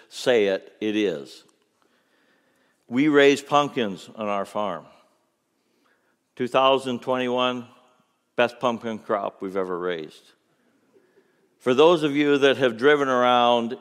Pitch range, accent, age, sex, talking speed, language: 105-135 Hz, American, 60-79, male, 110 wpm, English